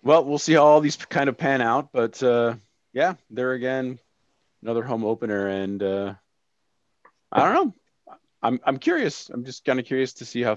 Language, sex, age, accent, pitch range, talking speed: English, male, 30-49, American, 95-125 Hz, 195 wpm